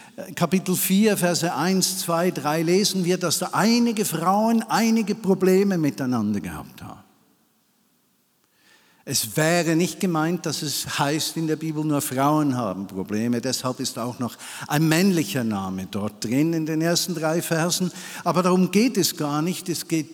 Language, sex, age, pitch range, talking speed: German, male, 50-69, 125-180 Hz, 160 wpm